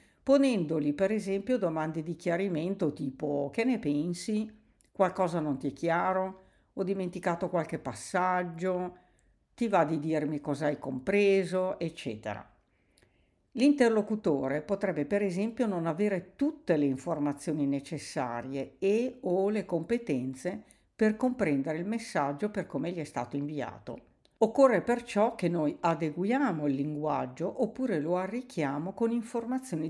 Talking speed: 125 wpm